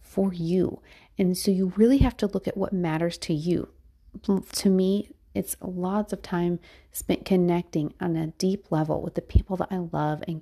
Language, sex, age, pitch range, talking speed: English, female, 30-49, 165-195 Hz, 190 wpm